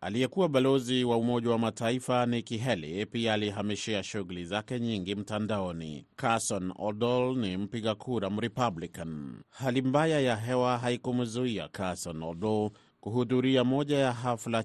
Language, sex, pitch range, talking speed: Swahili, male, 100-125 Hz, 125 wpm